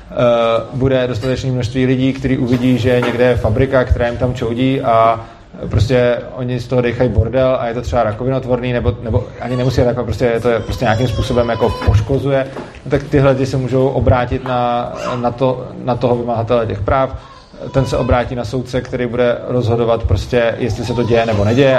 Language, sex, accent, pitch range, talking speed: Czech, male, native, 120-130 Hz, 190 wpm